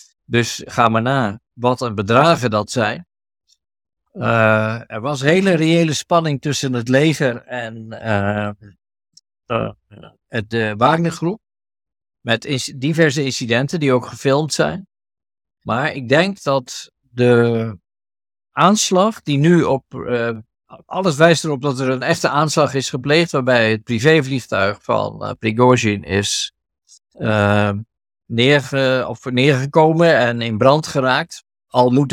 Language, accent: Dutch, Dutch